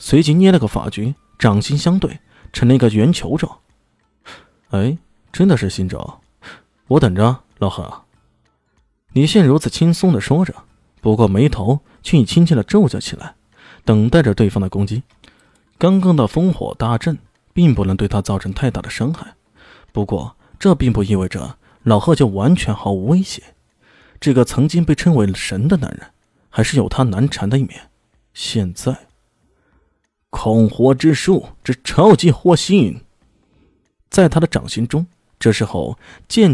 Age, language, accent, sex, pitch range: 20-39, Chinese, native, male, 110-165 Hz